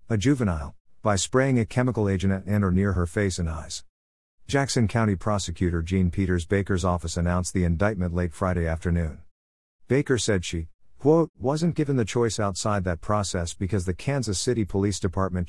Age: 50-69